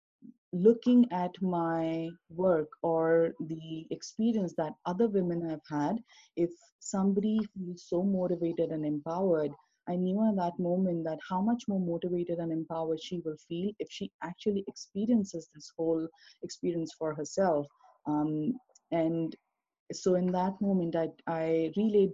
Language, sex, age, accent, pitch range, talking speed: English, female, 30-49, Indian, 160-195 Hz, 140 wpm